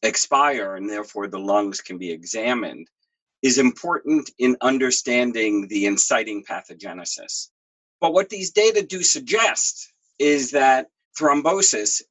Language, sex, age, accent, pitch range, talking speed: English, male, 40-59, American, 105-165 Hz, 120 wpm